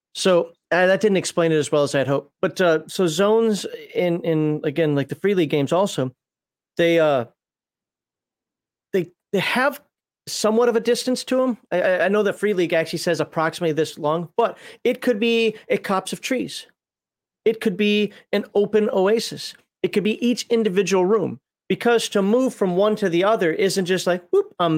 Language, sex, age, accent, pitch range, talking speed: English, male, 40-59, American, 165-210 Hz, 190 wpm